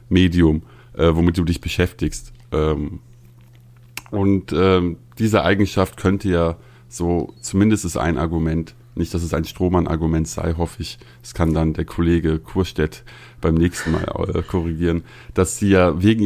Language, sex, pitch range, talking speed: German, male, 85-105 Hz, 150 wpm